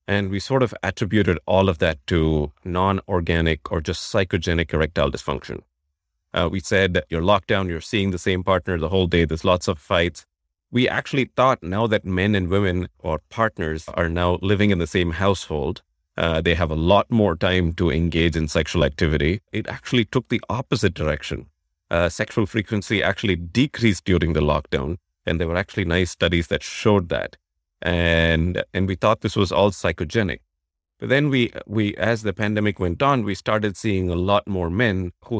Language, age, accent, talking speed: English, 30-49, Indian, 190 wpm